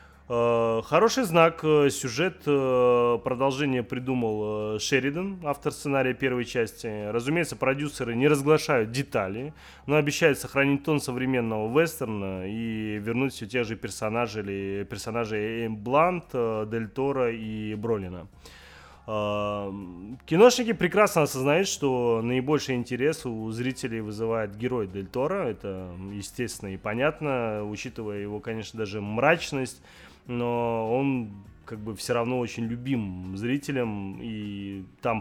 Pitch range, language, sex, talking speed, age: 105-135 Hz, Russian, male, 110 wpm, 20-39